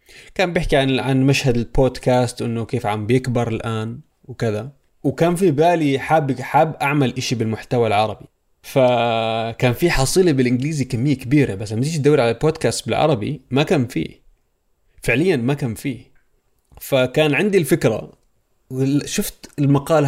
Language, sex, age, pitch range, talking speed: Arabic, male, 20-39, 120-145 Hz, 135 wpm